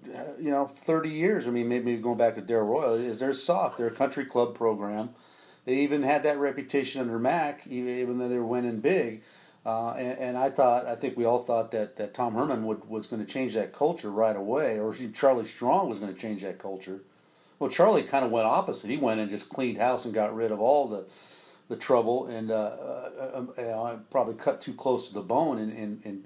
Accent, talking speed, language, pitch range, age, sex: American, 235 wpm, English, 115-140 Hz, 40-59, male